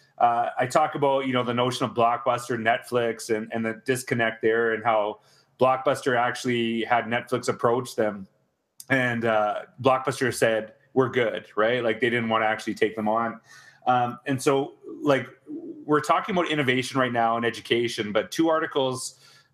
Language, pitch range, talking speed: English, 115-140 Hz, 170 wpm